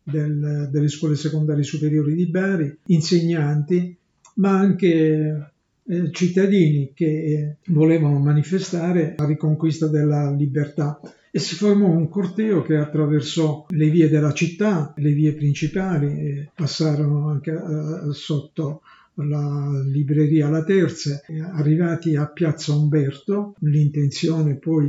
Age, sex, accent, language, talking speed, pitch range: 50-69, male, native, Italian, 115 wpm, 150-170 Hz